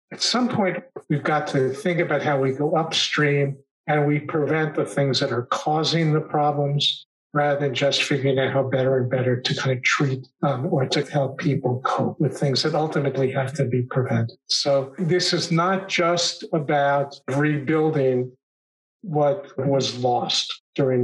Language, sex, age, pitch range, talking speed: English, male, 60-79, 130-155 Hz, 170 wpm